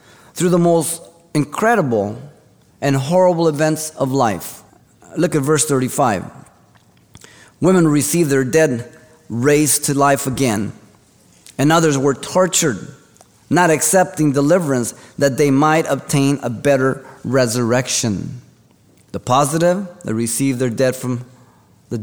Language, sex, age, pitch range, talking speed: English, male, 30-49, 110-145 Hz, 115 wpm